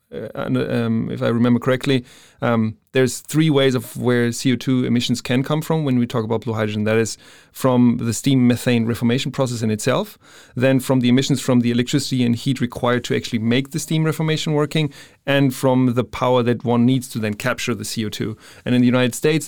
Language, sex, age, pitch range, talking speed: English, male, 30-49, 120-145 Hz, 205 wpm